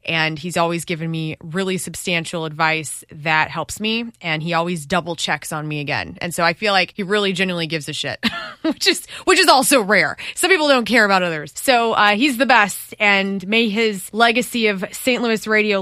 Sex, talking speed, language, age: female, 210 wpm, English, 20-39